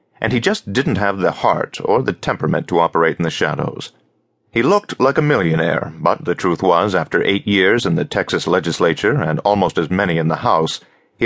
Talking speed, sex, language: 210 wpm, male, English